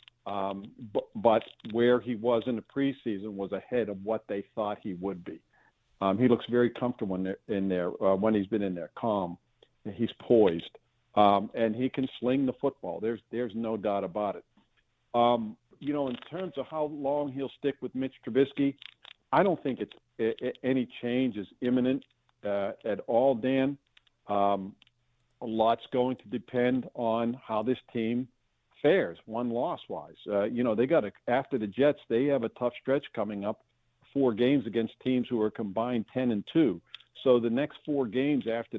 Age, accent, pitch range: 50-69, American, 110-135 Hz